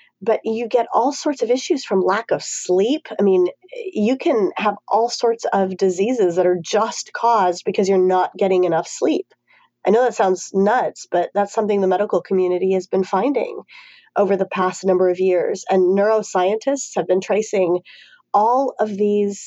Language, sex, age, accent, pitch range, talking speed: English, female, 30-49, American, 185-255 Hz, 180 wpm